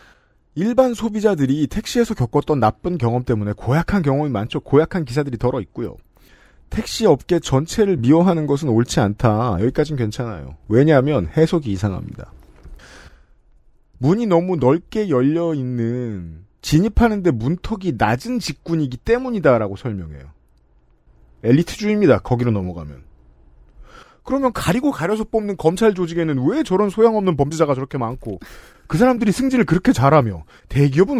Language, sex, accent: Korean, male, native